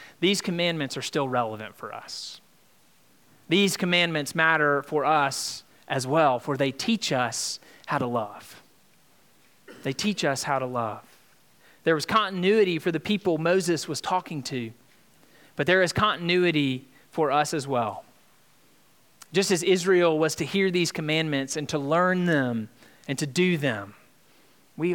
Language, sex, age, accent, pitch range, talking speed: English, male, 30-49, American, 140-185 Hz, 150 wpm